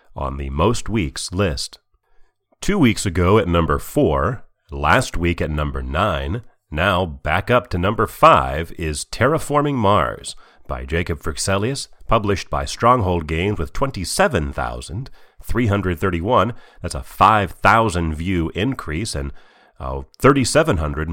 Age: 40-59